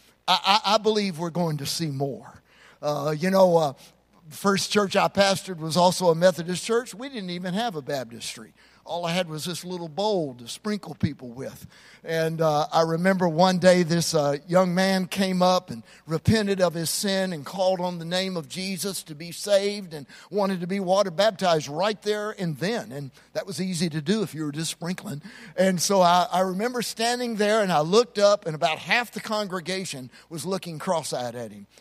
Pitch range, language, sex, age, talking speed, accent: 165-205 Hz, English, male, 50-69, 205 wpm, American